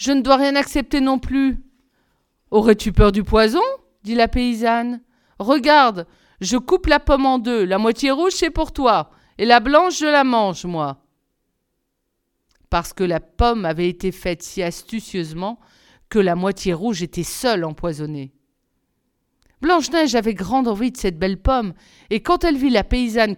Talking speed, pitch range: 165 wpm, 185-255 Hz